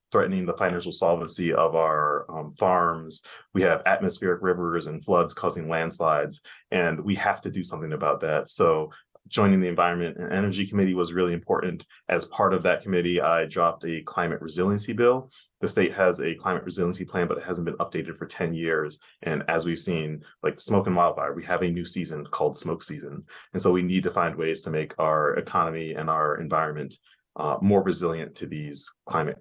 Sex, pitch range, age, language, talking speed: male, 85-100 Hz, 30-49, English, 195 wpm